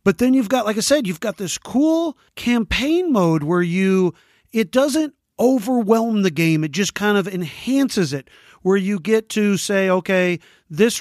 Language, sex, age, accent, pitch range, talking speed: English, male, 40-59, American, 165-205 Hz, 180 wpm